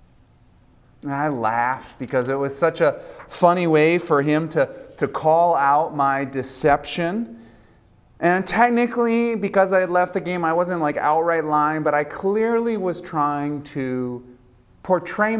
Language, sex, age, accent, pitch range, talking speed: English, male, 30-49, American, 145-195 Hz, 145 wpm